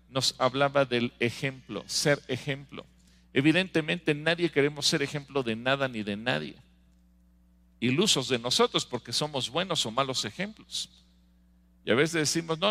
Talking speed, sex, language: 140 wpm, male, English